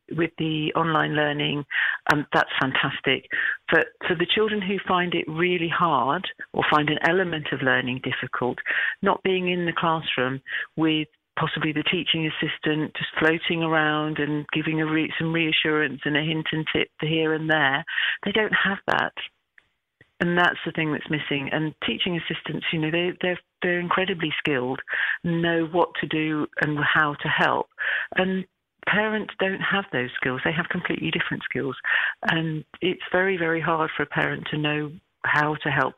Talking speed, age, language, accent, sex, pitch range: 170 wpm, 50-69, English, British, female, 150-175 Hz